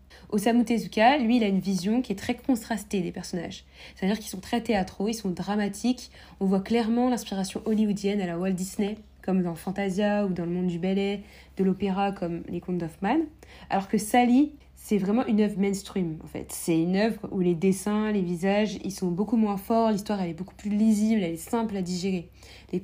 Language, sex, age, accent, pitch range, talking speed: French, female, 20-39, French, 185-220 Hz, 210 wpm